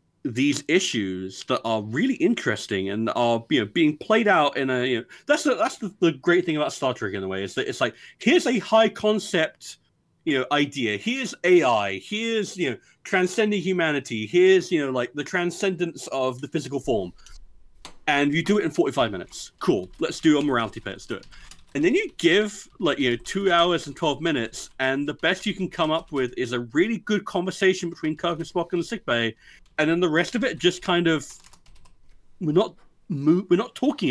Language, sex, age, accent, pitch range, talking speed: English, male, 40-59, British, 140-190 Hz, 210 wpm